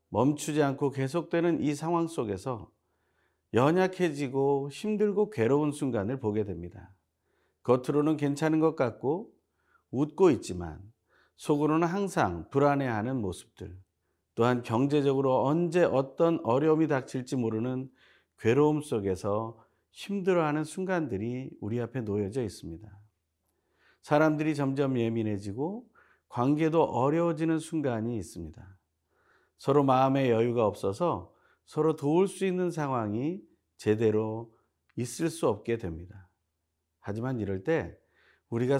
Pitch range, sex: 100-150 Hz, male